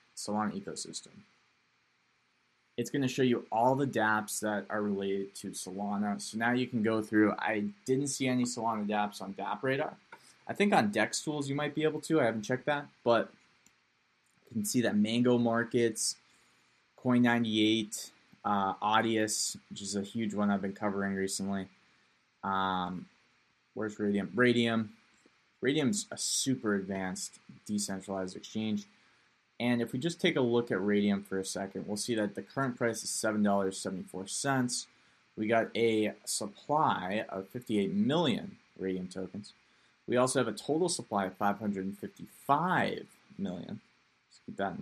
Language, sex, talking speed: English, male, 155 wpm